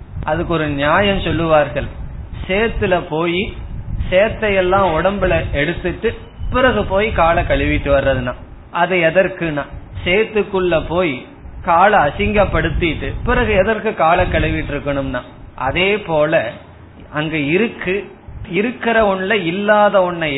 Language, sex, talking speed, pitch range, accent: Tamil, male, 95 wpm, 140-200 Hz, native